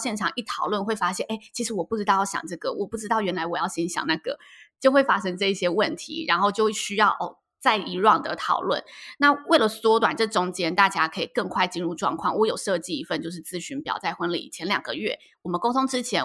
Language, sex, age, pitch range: Chinese, female, 20-39, 185-250 Hz